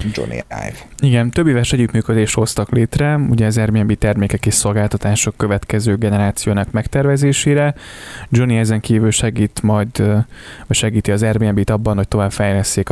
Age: 20-39